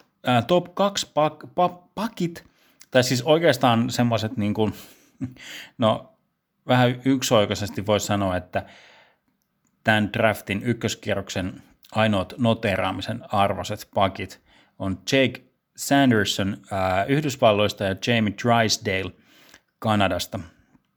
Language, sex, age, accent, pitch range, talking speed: Finnish, male, 30-49, native, 95-120 Hz, 90 wpm